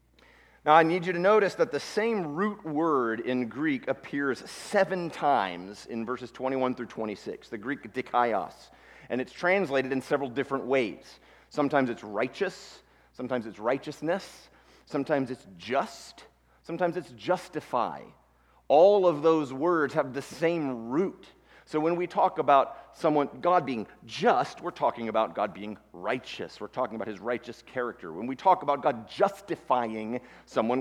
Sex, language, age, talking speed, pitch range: male, English, 40-59, 155 wpm, 125-170 Hz